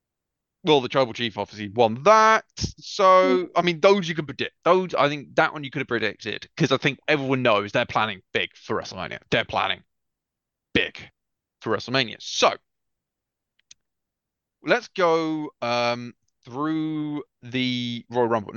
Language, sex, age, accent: English, male, 20-39, British